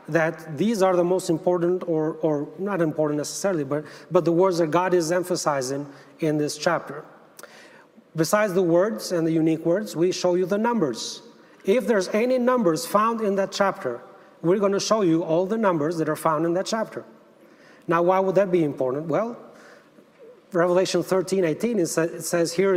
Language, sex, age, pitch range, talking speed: English, male, 40-59, 165-195 Hz, 185 wpm